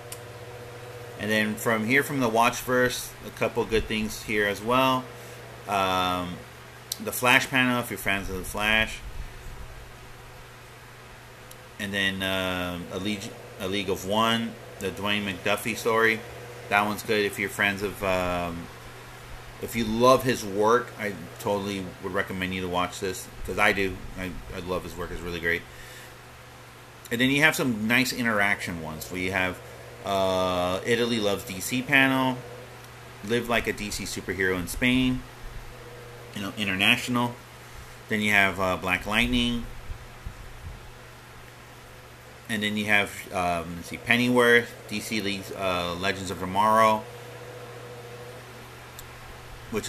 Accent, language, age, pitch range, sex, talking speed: American, English, 30-49, 95-120 Hz, male, 140 wpm